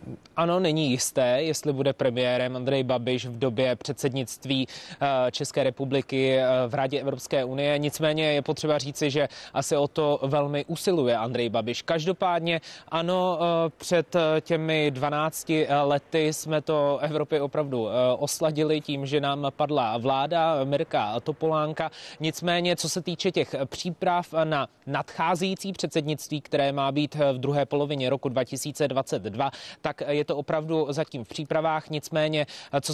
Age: 20-39